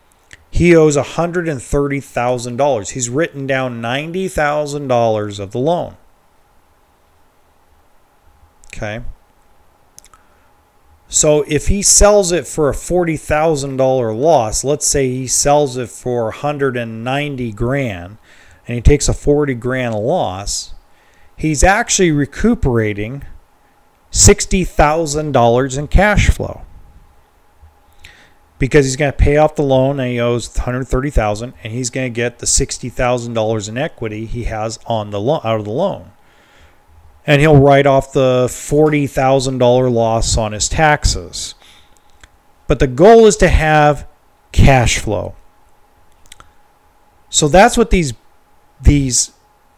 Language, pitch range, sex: English, 105-150 Hz, male